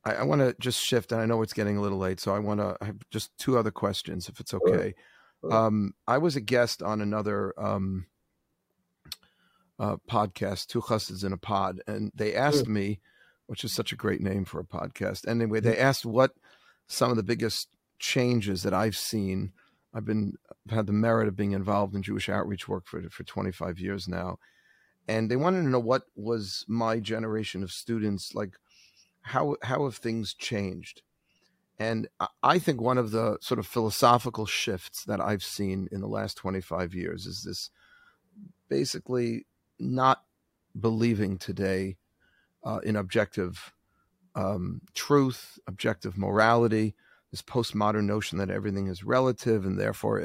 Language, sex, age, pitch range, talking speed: English, male, 40-59, 100-120 Hz, 170 wpm